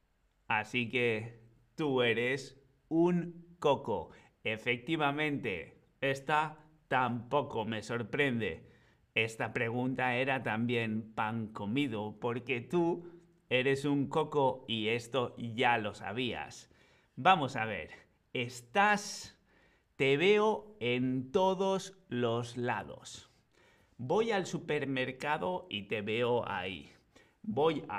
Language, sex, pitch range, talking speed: Spanish, male, 120-165 Hz, 100 wpm